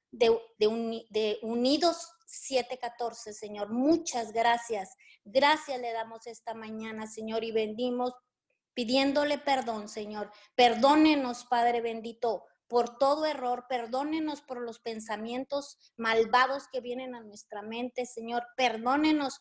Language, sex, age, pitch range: Spanish, female, 30-49, 230-265 Hz